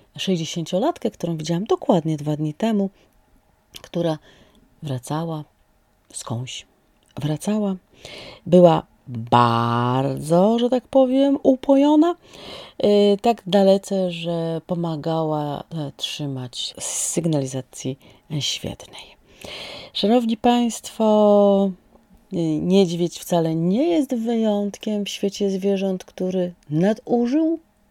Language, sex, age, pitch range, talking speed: Polish, female, 30-49, 150-200 Hz, 75 wpm